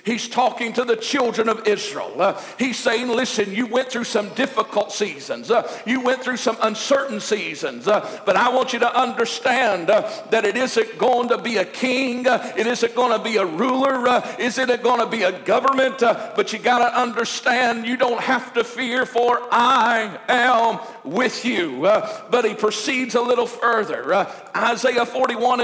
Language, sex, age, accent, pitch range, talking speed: English, male, 50-69, American, 225-250 Hz, 190 wpm